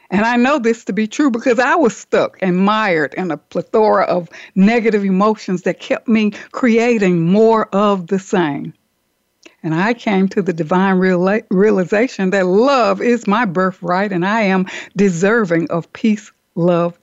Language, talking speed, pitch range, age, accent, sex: English, 160 wpm, 190-245 Hz, 60-79, American, female